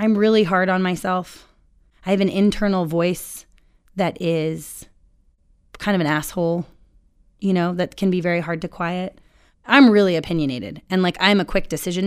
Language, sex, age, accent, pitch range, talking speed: English, female, 20-39, American, 165-200 Hz, 170 wpm